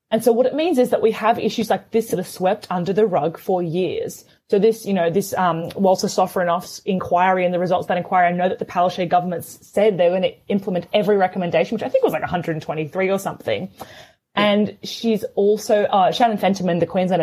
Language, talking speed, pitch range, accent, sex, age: English, 225 wpm, 175-210 Hz, Australian, female, 20-39